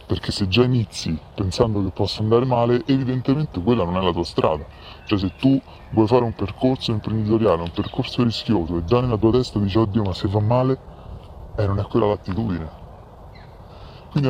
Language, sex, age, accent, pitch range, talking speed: Italian, female, 20-39, native, 90-110 Hz, 185 wpm